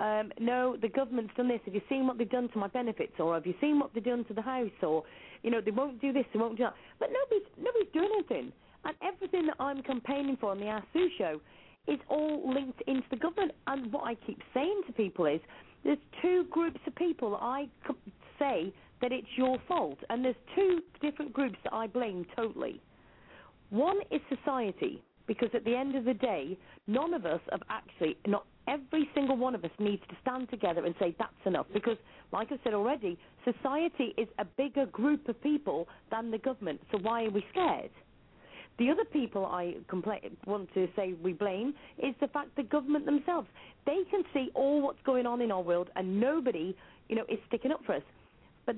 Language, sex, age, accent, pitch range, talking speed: English, female, 40-59, British, 215-285 Hz, 210 wpm